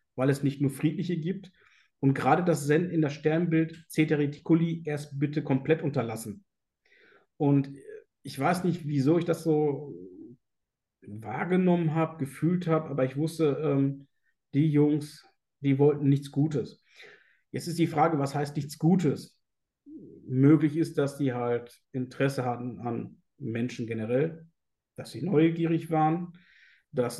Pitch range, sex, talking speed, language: 135-160 Hz, male, 140 wpm, German